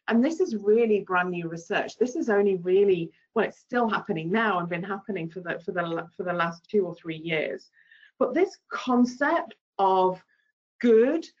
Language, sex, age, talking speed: English, female, 40-59, 170 wpm